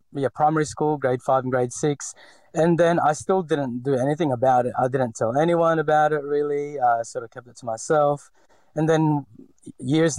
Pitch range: 120-150 Hz